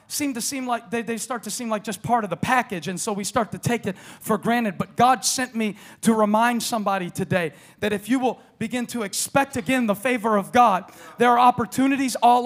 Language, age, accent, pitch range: English, 40-59, American, 145-235 Hz